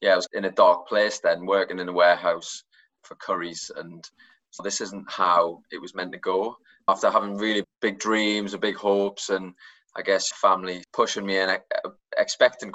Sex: male